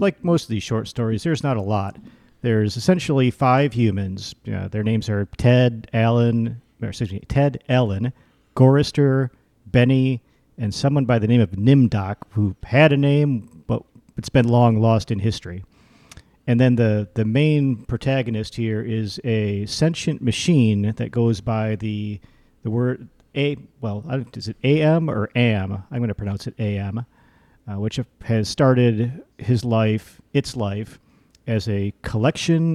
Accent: American